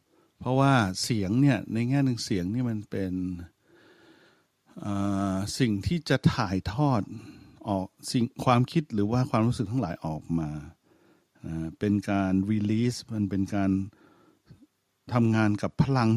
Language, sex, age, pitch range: English, male, 60-79, 95-125 Hz